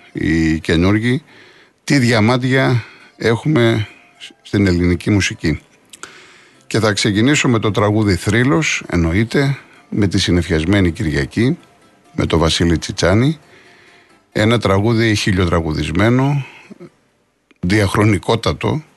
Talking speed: 90 wpm